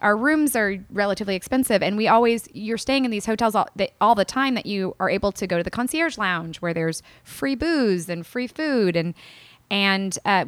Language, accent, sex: English, American, female